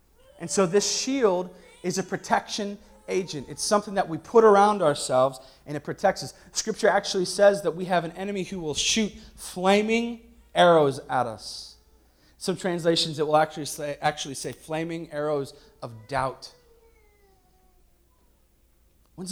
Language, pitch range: English, 120-160 Hz